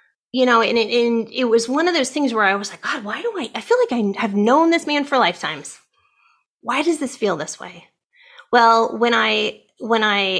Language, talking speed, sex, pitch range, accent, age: English, 230 wpm, female, 185-235 Hz, American, 30-49